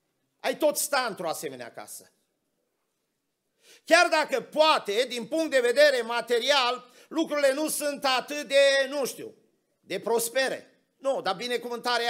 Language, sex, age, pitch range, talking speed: Romanian, male, 50-69, 230-310 Hz, 130 wpm